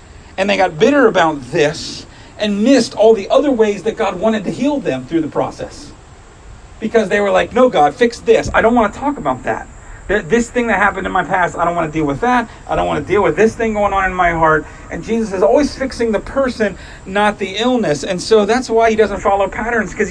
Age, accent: 40-59, American